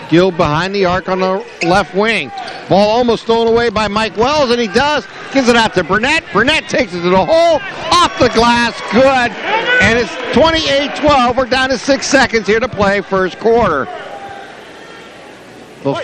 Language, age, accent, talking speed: English, 60-79, American, 175 wpm